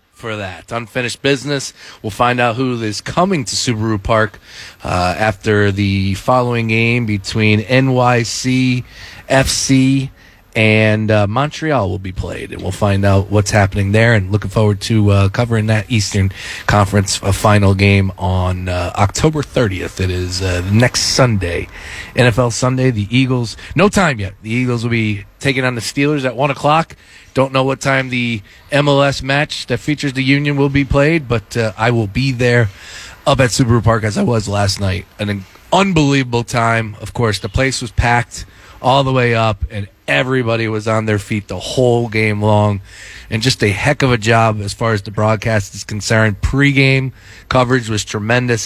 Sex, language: male, English